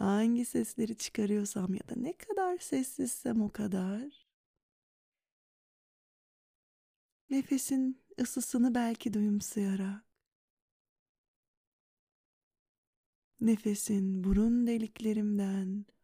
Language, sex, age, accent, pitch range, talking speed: Turkish, female, 30-49, native, 205-255 Hz, 65 wpm